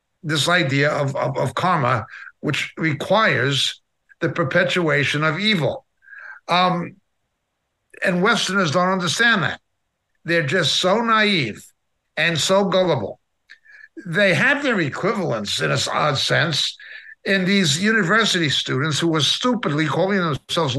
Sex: male